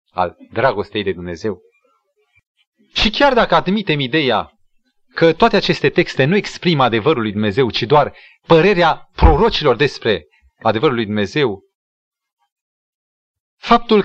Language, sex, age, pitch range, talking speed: Romanian, male, 30-49, 125-200 Hz, 115 wpm